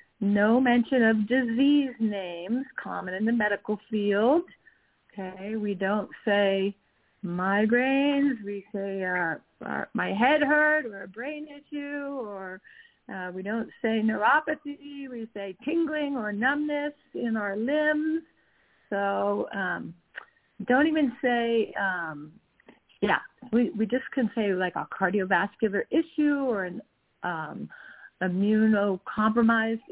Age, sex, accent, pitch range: 40-59, female, American, 200-270 Hz